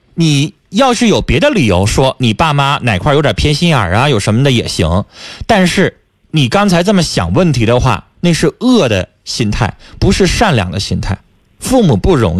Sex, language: male, Chinese